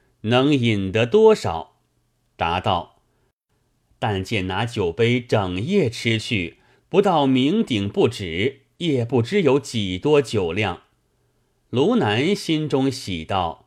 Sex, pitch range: male, 100-130 Hz